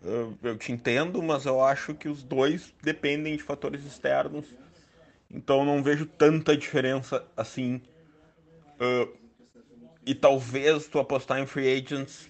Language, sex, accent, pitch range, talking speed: Portuguese, male, Brazilian, 110-135 Hz, 135 wpm